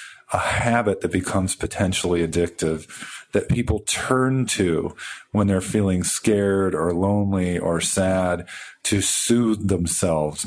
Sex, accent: male, American